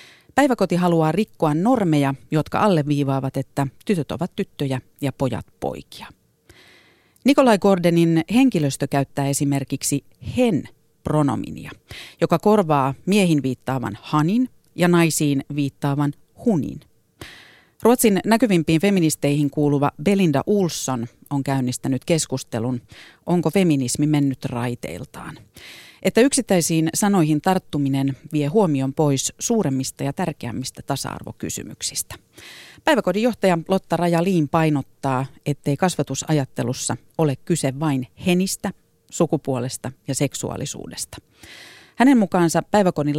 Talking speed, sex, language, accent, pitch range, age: 95 wpm, female, Finnish, native, 135-180 Hz, 40-59